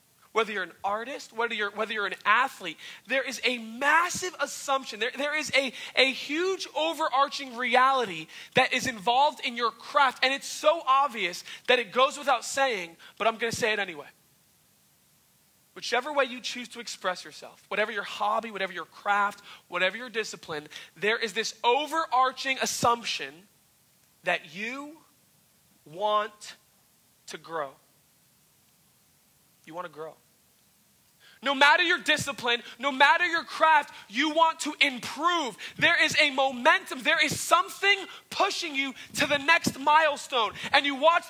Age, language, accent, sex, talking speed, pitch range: 20-39, English, American, male, 145 wpm, 225-300 Hz